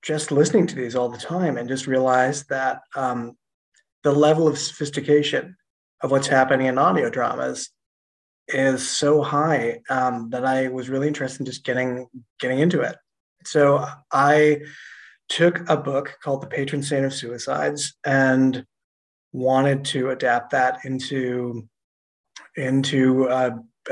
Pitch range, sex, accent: 125-145 Hz, male, American